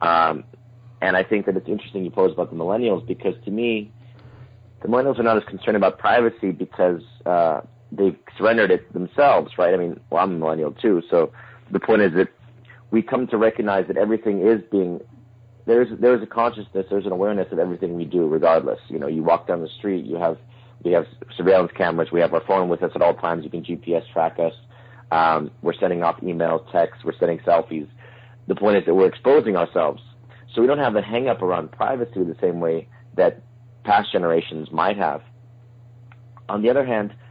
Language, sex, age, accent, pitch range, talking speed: English, male, 30-49, American, 95-120 Hz, 200 wpm